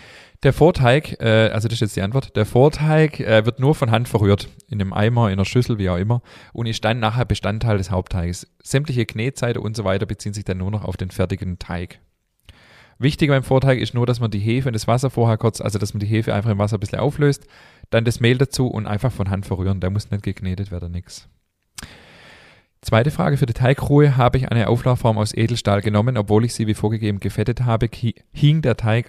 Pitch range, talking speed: 100-125 Hz, 220 wpm